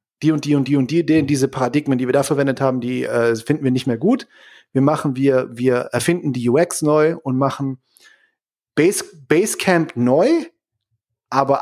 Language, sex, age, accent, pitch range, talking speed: German, male, 40-59, German, 125-155 Hz, 185 wpm